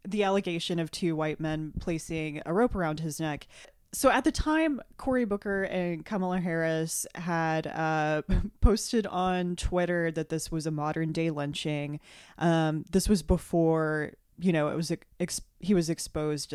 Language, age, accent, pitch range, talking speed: English, 20-39, American, 155-185 Hz, 165 wpm